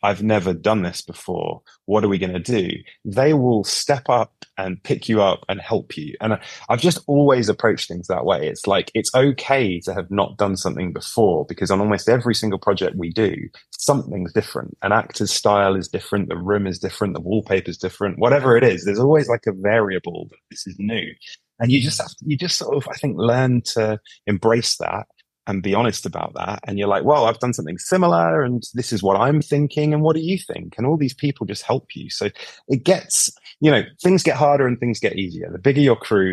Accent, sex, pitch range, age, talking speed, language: British, male, 95-130 Hz, 20-39, 225 wpm, English